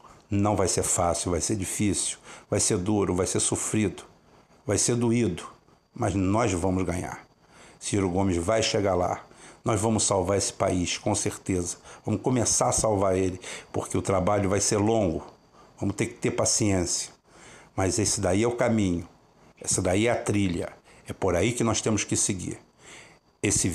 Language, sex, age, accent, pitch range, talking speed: Portuguese, male, 60-79, Brazilian, 95-115 Hz, 170 wpm